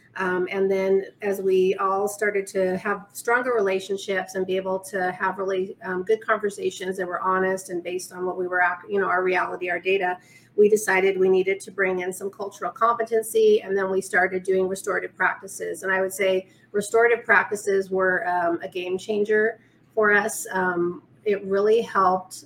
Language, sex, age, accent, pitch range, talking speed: English, female, 30-49, American, 185-205 Hz, 185 wpm